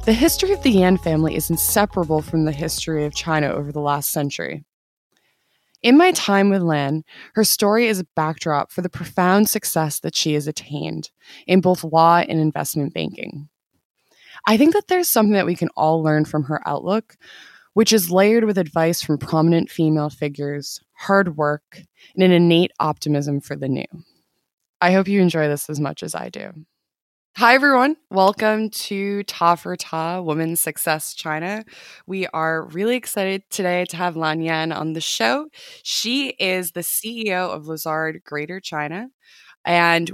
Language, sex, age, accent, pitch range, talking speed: English, female, 20-39, American, 155-205 Hz, 170 wpm